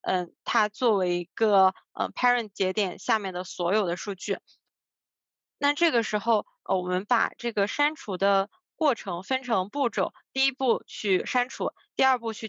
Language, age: Chinese, 20-39